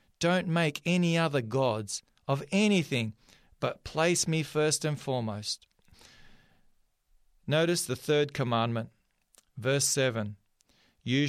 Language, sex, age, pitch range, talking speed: English, male, 40-59, 130-170 Hz, 105 wpm